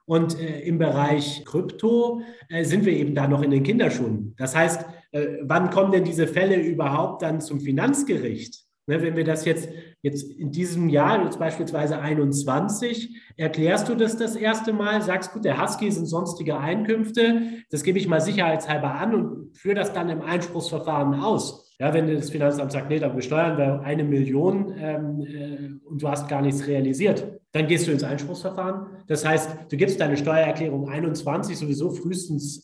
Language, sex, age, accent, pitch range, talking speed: German, male, 30-49, German, 145-185 Hz, 170 wpm